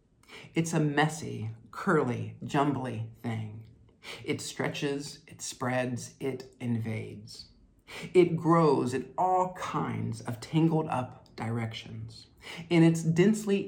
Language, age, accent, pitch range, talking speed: English, 50-69, American, 115-170 Hz, 105 wpm